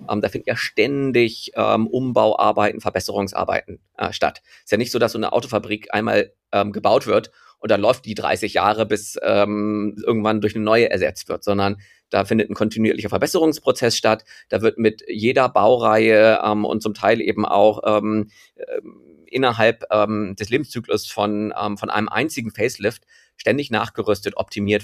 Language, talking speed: German, 170 wpm